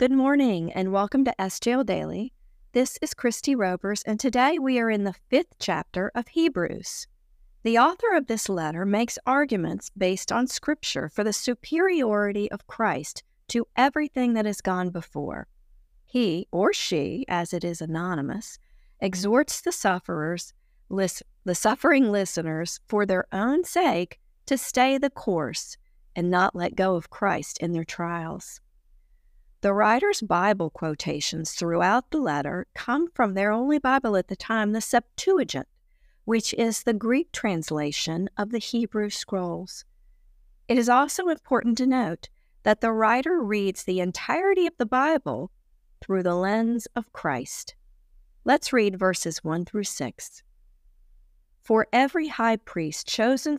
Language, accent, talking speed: English, American, 145 wpm